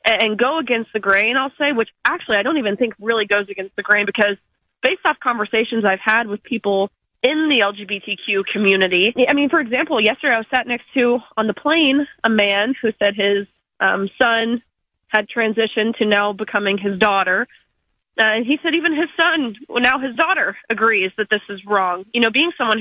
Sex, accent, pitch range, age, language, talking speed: female, American, 210-275 Hz, 20-39, English, 205 wpm